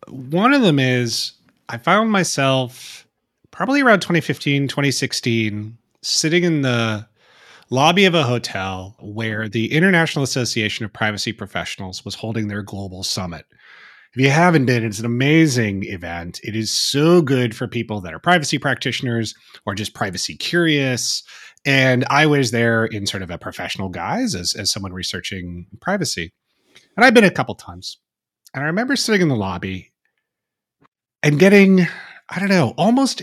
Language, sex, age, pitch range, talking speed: English, male, 30-49, 105-155 Hz, 155 wpm